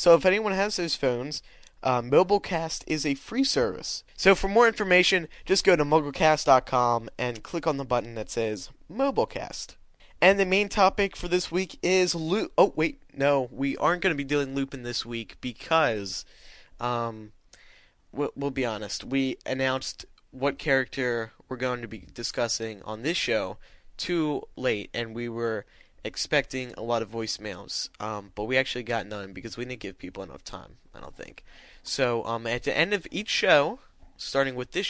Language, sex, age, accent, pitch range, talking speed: English, male, 20-39, American, 115-160 Hz, 180 wpm